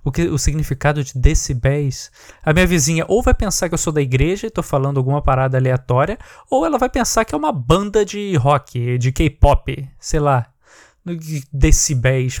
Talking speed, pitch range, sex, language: 190 wpm, 130-175 Hz, male, Portuguese